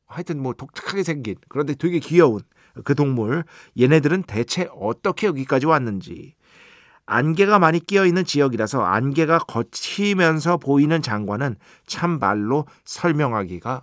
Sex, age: male, 50-69